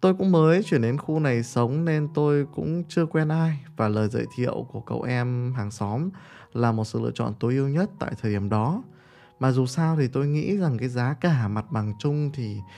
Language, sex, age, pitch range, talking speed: Vietnamese, male, 20-39, 115-150 Hz, 230 wpm